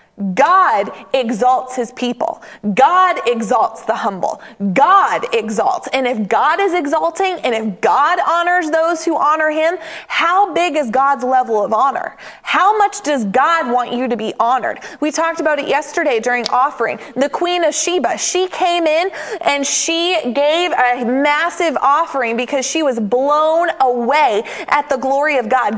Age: 20-39